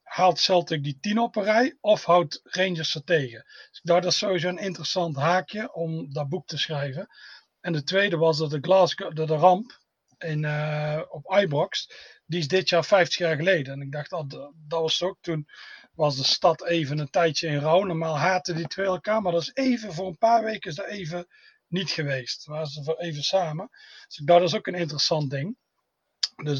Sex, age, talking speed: male, 40-59, 215 wpm